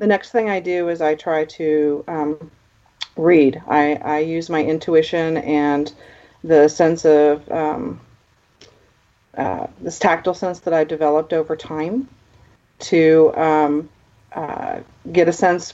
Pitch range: 145-165 Hz